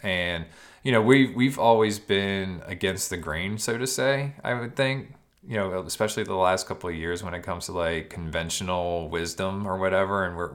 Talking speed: 205 wpm